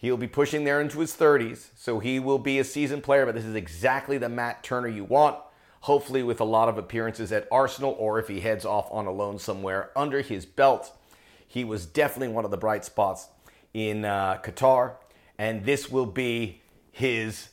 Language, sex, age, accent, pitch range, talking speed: English, male, 40-59, American, 110-145 Hz, 200 wpm